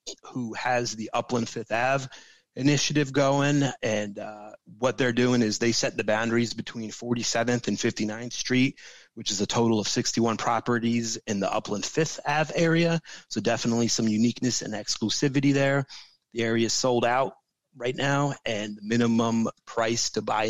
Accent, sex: American, male